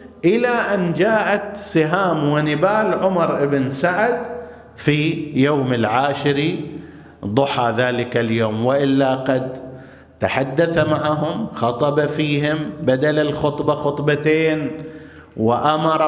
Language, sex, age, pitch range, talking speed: Arabic, male, 50-69, 115-155 Hz, 90 wpm